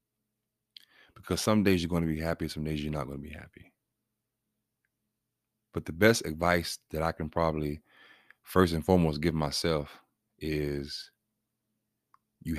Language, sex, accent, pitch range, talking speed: English, male, American, 80-105 Hz, 150 wpm